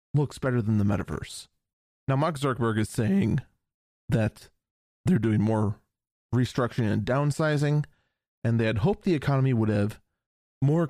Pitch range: 110-145 Hz